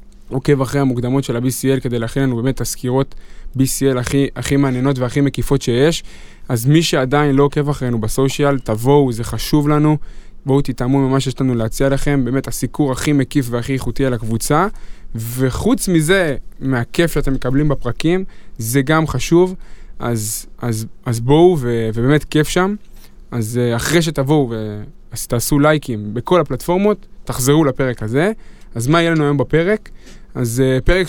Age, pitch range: 20-39, 120-150 Hz